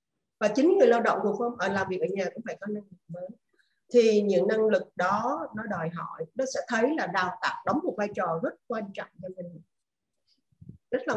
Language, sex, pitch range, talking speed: Vietnamese, female, 185-240 Hz, 230 wpm